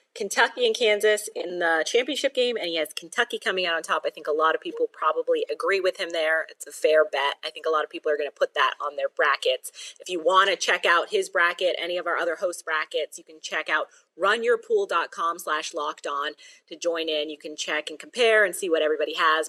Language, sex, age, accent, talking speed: English, female, 30-49, American, 235 wpm